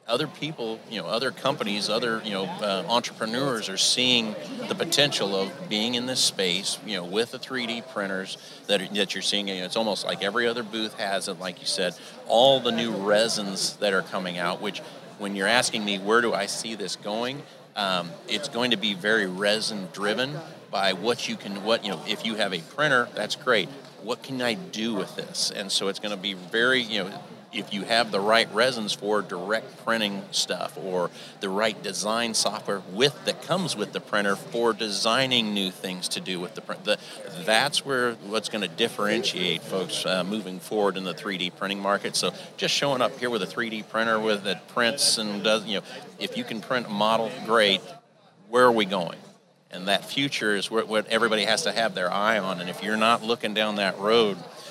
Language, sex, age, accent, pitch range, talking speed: English, male, 40-59, American, 100-120 Hz, 210 wpm